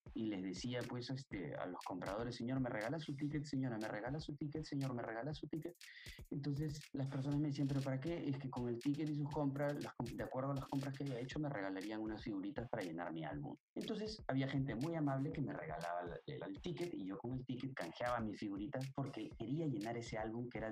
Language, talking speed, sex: Spanish, 235 wpm, male